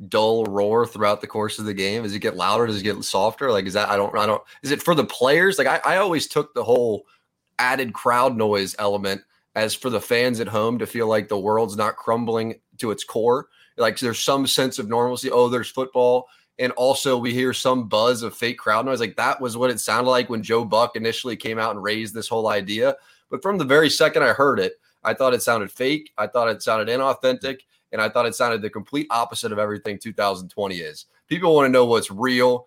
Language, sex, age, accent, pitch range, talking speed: English, male, 20-39, American, 110-135 Hz, 235 wpm